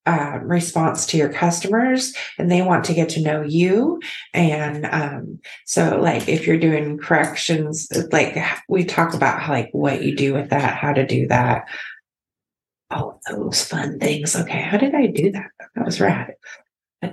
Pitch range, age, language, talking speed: 150-200 Hz, 30-49, English, 170 wpm